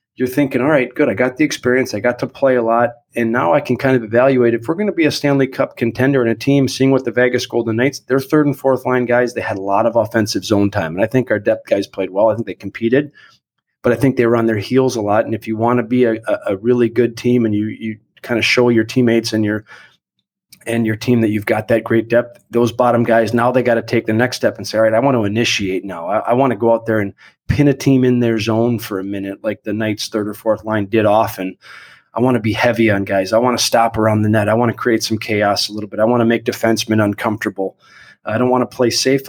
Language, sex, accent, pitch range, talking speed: English, male, American, 110-125 Hz, 285 wpm